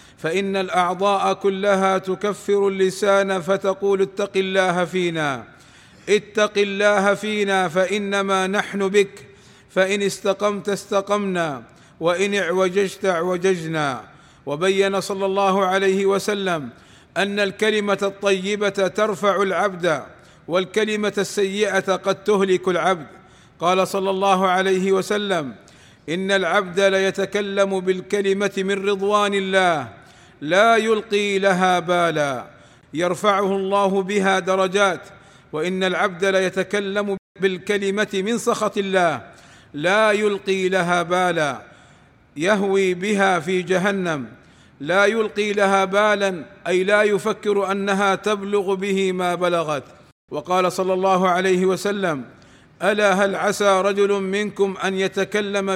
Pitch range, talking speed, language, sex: 185-200 Hz, 100 wpm, Arabic, male